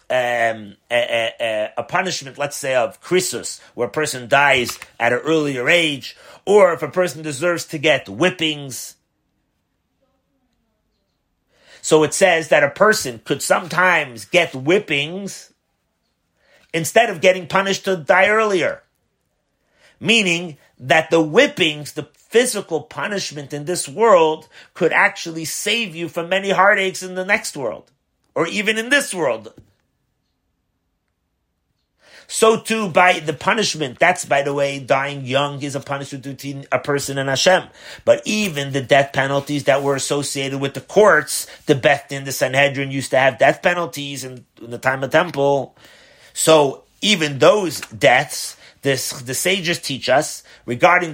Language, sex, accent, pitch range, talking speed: English, male, American, 135-180 Hz, 140 wpm